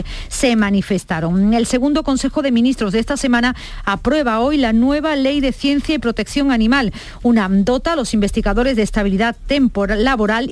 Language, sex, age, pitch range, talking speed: Spanish, female, 40-59, 200-250 Hz, 160 wpm